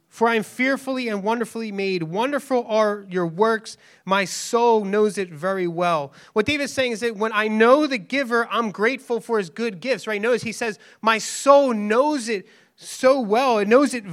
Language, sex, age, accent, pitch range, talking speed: English, male, 30-49, American, 190-250 Hz, 195 wpm